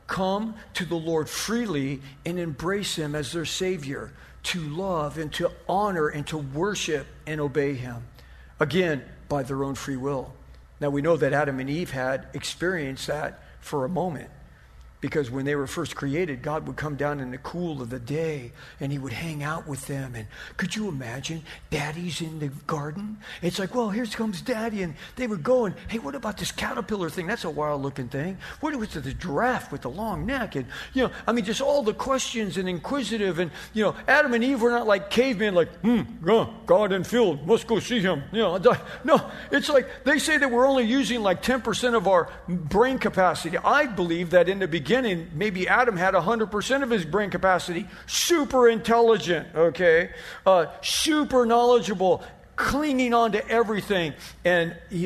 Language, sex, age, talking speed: English, male, 50-69, 195 wpm